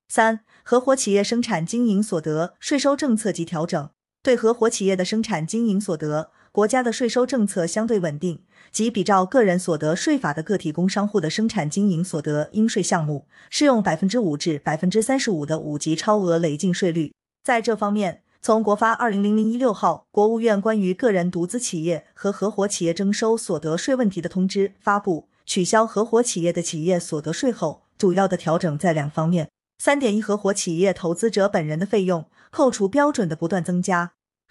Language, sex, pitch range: Chinese, female, 170-230 Hz